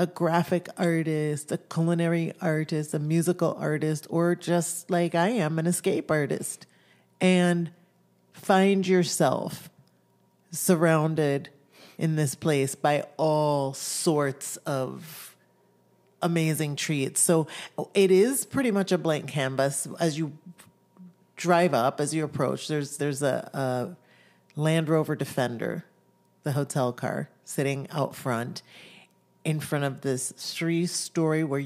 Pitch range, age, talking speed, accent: 145-180 Hz, 40-59, 120 wpm, American